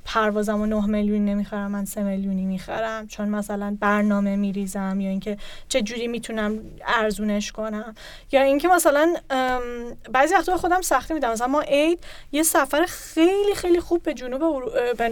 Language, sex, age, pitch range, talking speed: Persian, female, 10-29, 230-300 Hz, 165 wpm